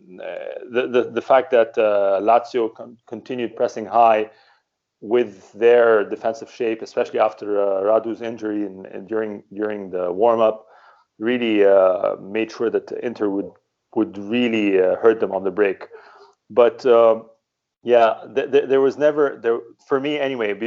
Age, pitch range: 30-49, 110-135 Hz